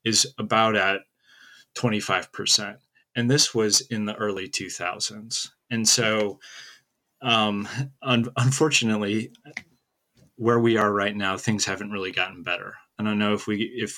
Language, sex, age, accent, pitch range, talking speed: English, male, 30-49, American, 100-120 Hz, 135 wpm